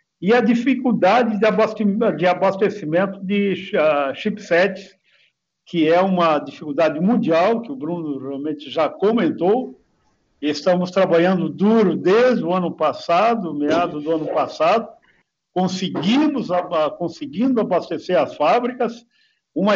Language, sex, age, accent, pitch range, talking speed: Portuguese, male, 60-79, Brazilian, 170-225 Hz, 105 wpm